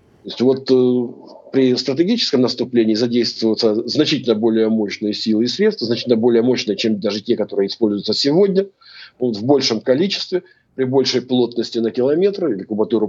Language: Russian